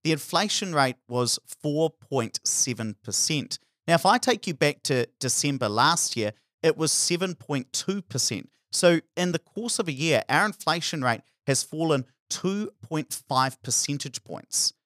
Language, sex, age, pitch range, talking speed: English, male, 40-59, 115-165 Hz, 135 wpm